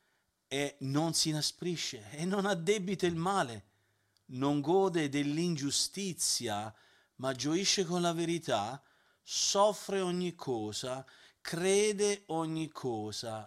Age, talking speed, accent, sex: 40-59, 100 wpm, native, male